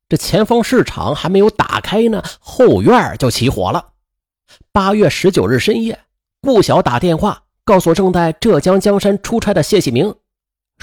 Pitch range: 155-235 Hz